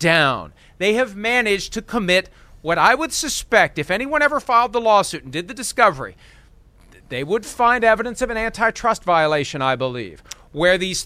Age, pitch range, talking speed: 40-59, 155-235 Hz, 175 wpm